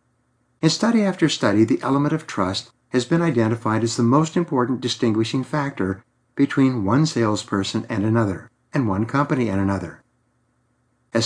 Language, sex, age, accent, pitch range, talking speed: English, male, 60-79, American, 115-145 Hz, 150 wpm